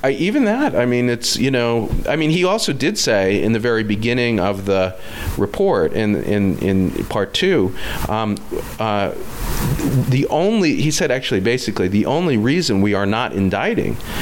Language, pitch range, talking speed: English, 100-140 Hz, 175 wpm